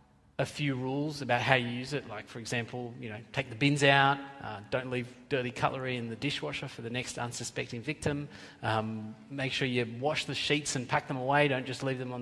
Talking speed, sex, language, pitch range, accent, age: 225 wpm, male, English, 125-170 Hz, Australian, 30-49